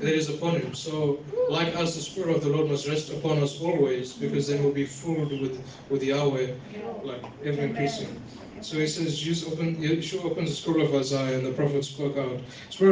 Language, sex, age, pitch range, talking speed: English, male, 20-39, 140-155 Hz, 210 wpm